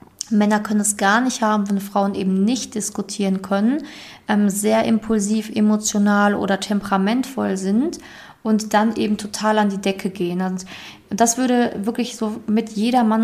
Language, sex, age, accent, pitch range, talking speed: German, female, 20-39, German, 200-220 Hz, 155 wpm